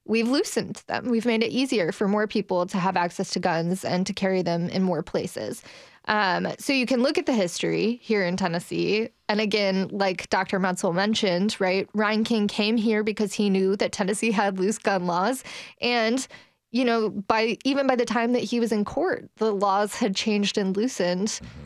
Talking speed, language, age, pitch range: 200 wpm, English, 20-39, 190-230 Hz